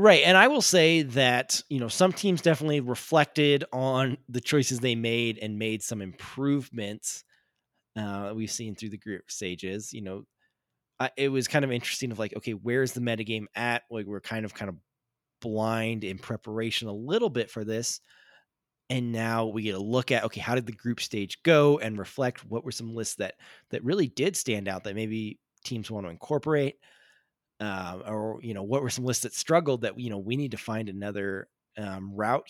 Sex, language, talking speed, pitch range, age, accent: male, English, 200 wpm, 110-135 Hz, 20-39, American